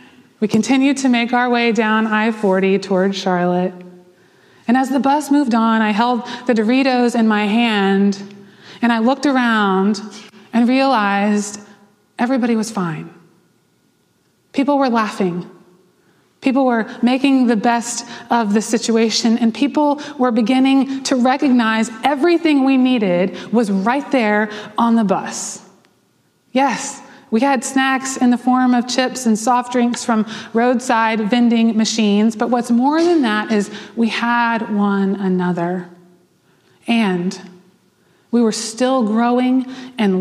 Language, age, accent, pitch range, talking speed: English, 20-39, American, 210-260 Hz, 135 wpm